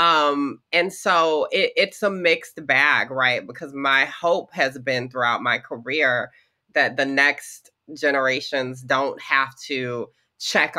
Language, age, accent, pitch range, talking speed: English, 20-39, American, 130-155 Hz, 140 wpm